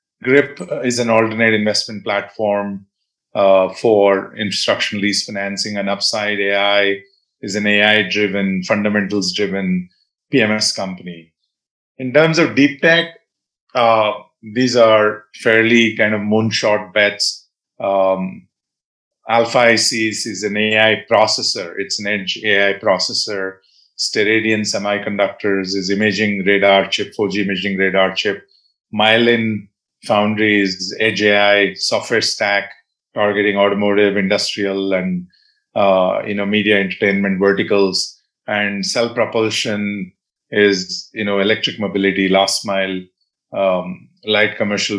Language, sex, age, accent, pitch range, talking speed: English, male, 30-49, Indian, 100-110 Hz, 110 wpm